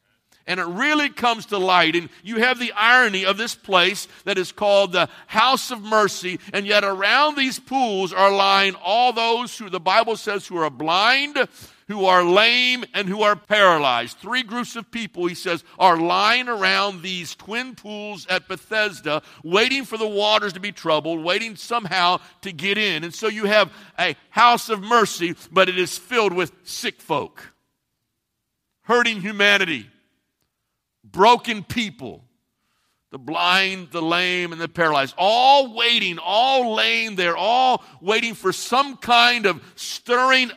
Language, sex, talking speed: English, male, 160 wpm